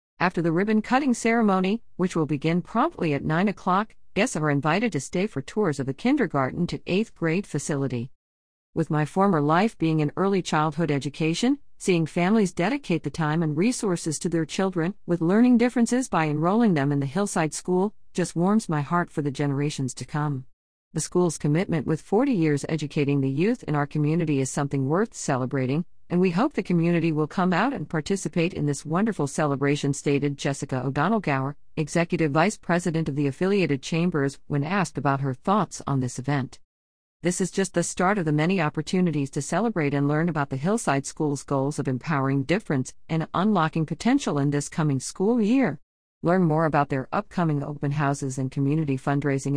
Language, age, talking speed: English, 50-69, 180 wpm